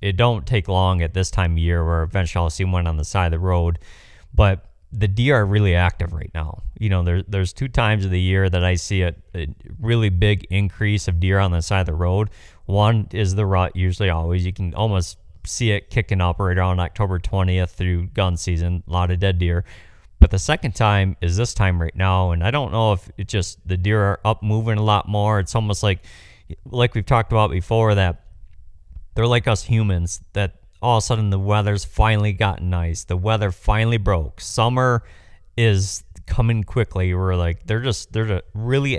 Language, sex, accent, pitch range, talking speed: English, male, American, 90-110 Hz, 210 wpm